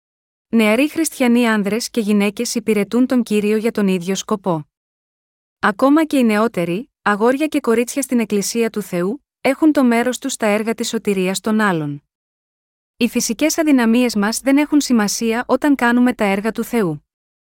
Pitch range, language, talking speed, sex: 205-250 Hz, Greek, 160 wpm, female